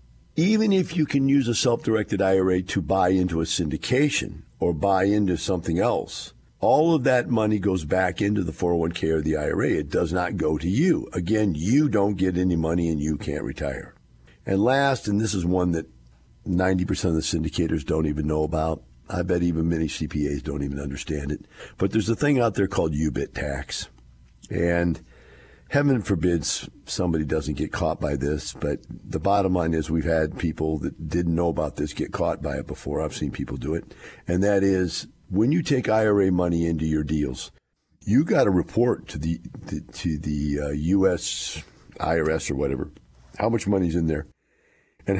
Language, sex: English, male